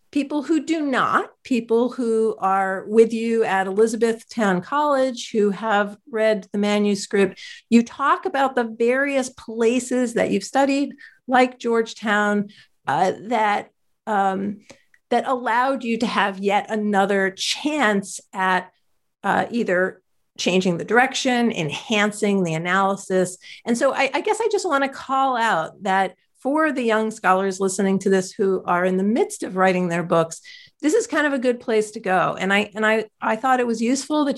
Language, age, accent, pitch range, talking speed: English, 50-69, American, 195-250 Hz, 165 wpm